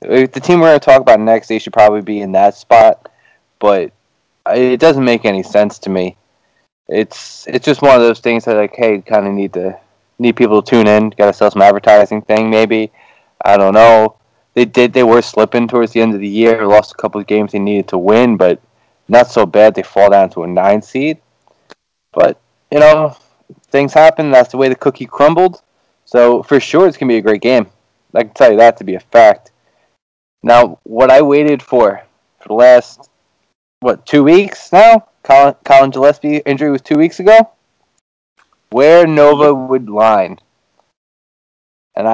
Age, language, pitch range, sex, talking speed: 20-39, English, 110-145 Hz, male, 195 wpm